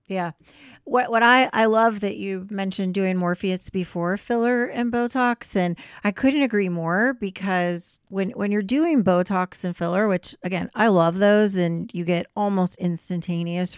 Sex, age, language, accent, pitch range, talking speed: female, 40-59, English, American, 170-210 Hz, 165 wpm